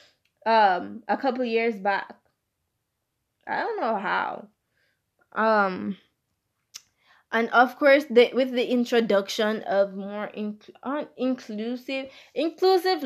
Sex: female